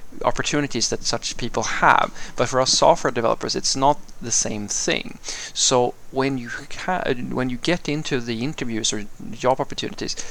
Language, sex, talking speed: English, male, 165 wpm